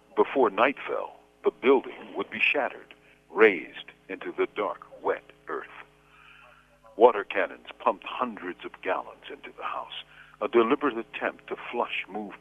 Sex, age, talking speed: male, 60-79, 135 wpm